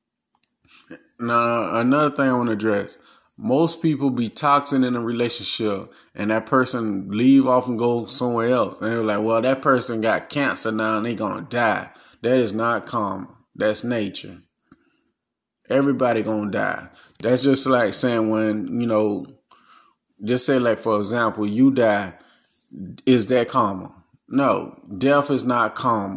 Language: English